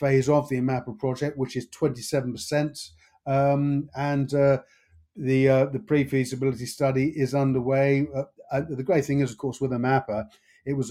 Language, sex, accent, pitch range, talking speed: English, male, British, 125-140 Hz, 170 wpm